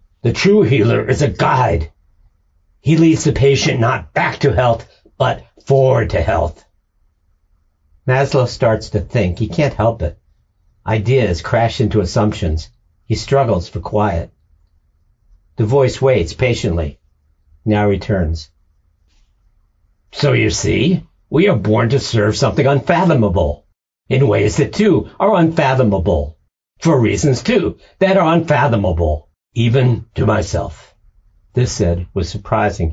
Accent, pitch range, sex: American, 85-130 Hz, male